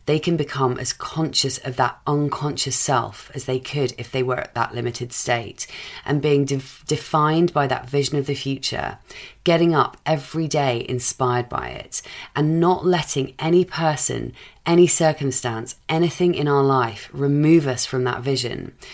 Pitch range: 125-150 Hz